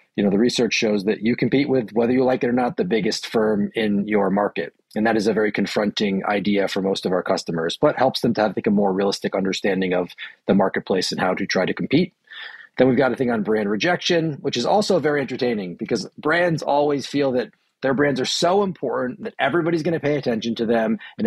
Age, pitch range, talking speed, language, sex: 40-59, 110-140 Hz, 235 wpm, English, male